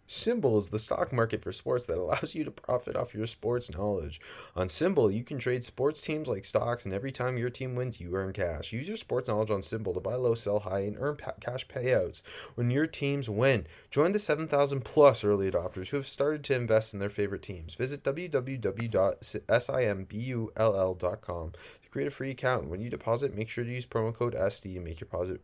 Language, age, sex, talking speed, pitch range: English, 30-49, male, 210 wpm, 100-135 Hz